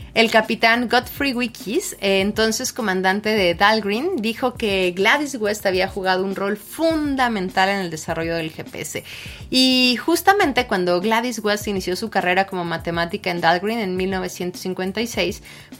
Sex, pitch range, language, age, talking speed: female, 200-270 Hz, Spanish, 30-49, 135 wpm